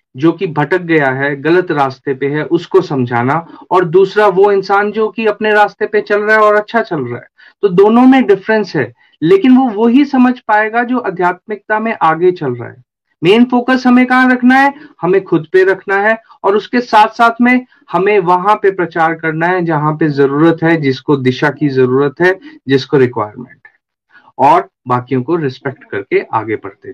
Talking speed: 190 wpm